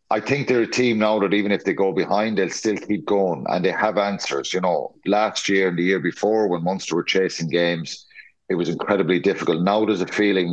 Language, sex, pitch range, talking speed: English, male, 85-105 Hz, 235 wpm